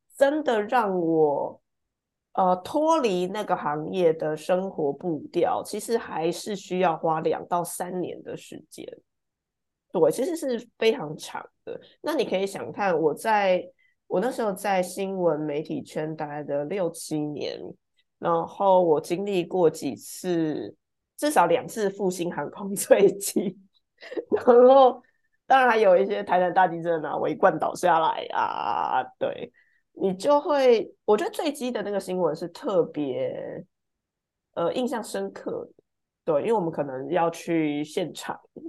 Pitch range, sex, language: 165-260 Hz, female, Chinese